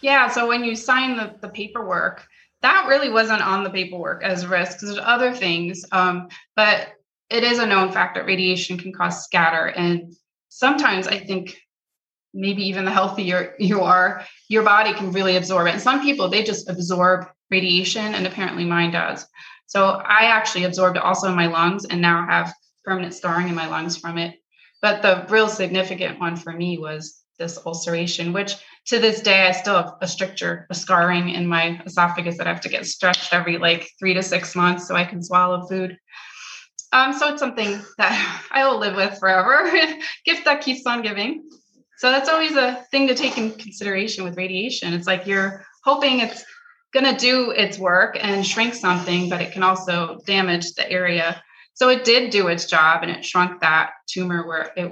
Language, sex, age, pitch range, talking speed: English, female, 20-39, 175-220 Hz, 195 wpm